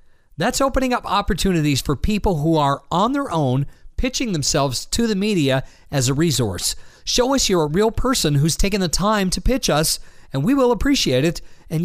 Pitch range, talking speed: 145-205 Hz, 190 wpm